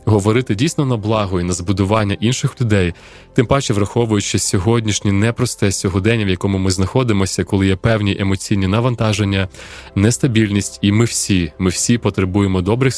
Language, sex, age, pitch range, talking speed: Ukrainian, male, 20-39, 100-125 Hz, 150 wpm